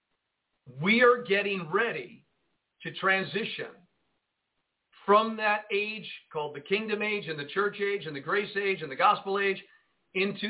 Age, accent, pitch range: 50-69, American, 160-220 Hz